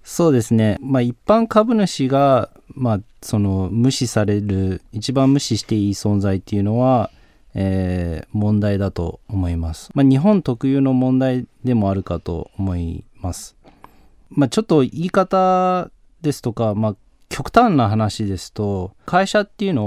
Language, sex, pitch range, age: Japanese, male, 100-140 Hz, 20-39